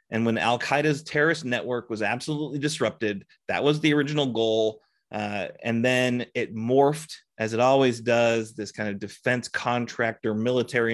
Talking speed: 155 wpm